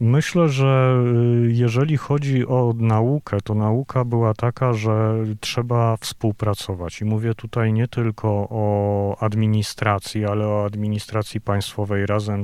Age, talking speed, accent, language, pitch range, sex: 40-59, 120 wpm, native, Polish, 105-115 Hz, male